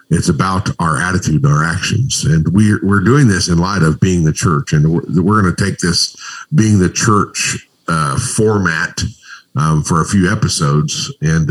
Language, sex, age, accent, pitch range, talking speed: English, male, 50-69, American, 85-120 Hz, 180 wpm